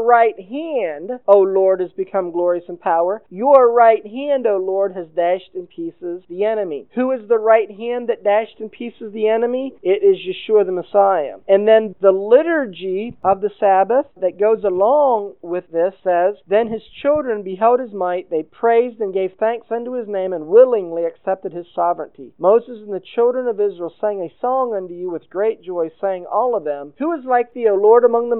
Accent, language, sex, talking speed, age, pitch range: American, English, male, 200 wpm, 50-69, 185-230 Hz